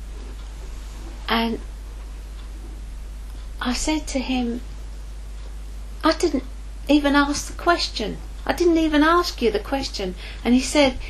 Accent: British